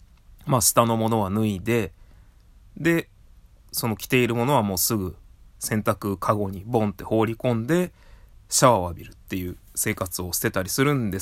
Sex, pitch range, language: male, 95-150 Hz, Japanese